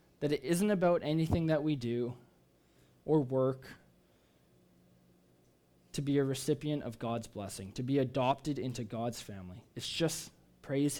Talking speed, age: 140 wpm, 20-39